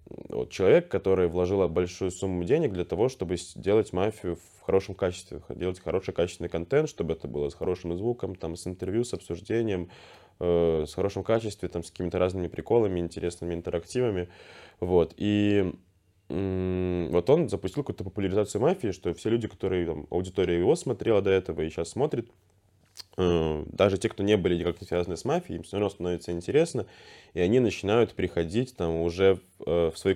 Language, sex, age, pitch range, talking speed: Russian, male, 10-29, 85-100 Hz, 160 wpm